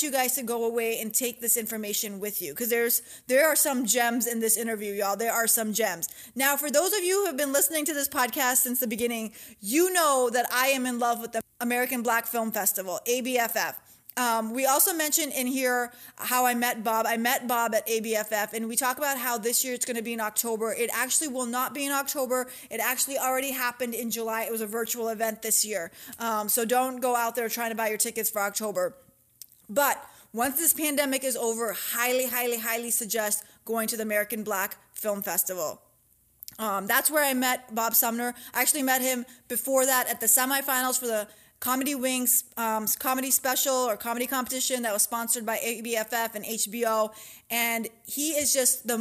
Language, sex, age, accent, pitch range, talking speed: English, female, 20-39, American, 225-260 Hz, 210 wpm